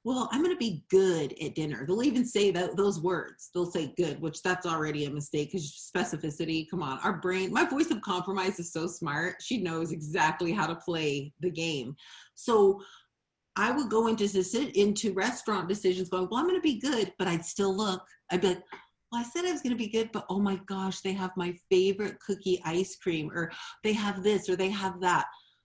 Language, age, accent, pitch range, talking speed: English, 40-59, American, 165-210 Hz, 215 wpm